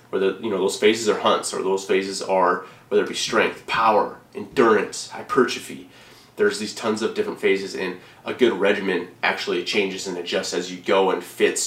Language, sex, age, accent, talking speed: English, male, 30-49, American, 190 wpm